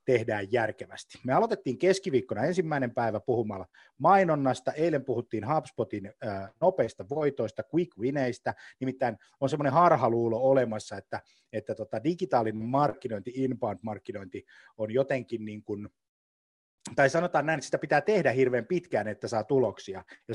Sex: male